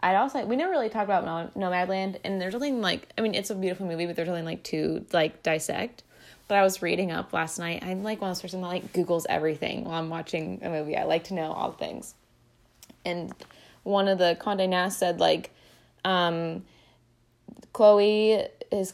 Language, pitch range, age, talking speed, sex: English, 175-230 Hz, 20-39, 205 wpm, female